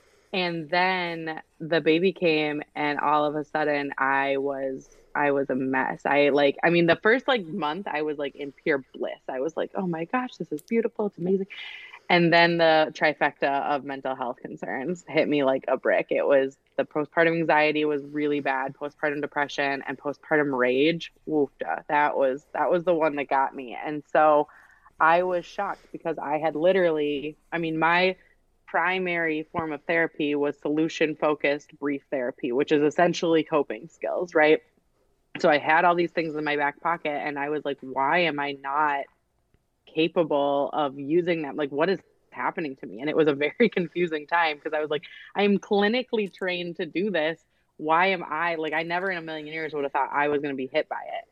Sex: female